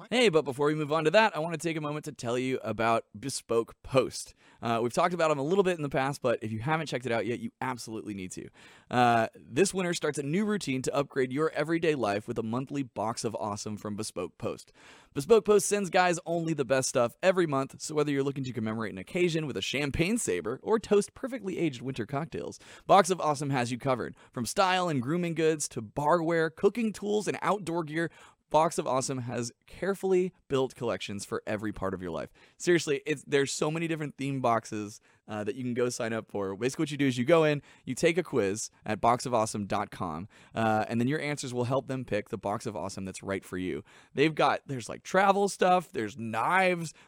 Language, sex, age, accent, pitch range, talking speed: English, male, 20-39, American, 115-165 Hz, 225 wpm